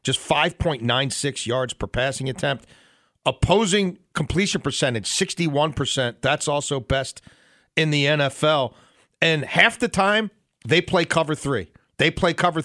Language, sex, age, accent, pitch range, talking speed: English, male, 40-59, American, 130-175 Hz, 130 wpm